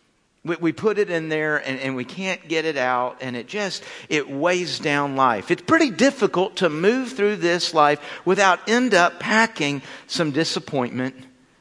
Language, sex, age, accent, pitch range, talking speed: English, male, 50-69, American, 145-195 Hz, 165 wpm